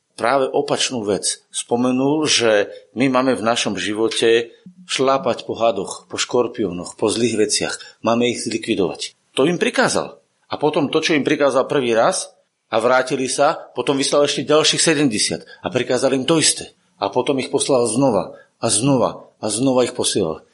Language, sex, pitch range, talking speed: Slovak, male, 110-140 Hz, 165 wpm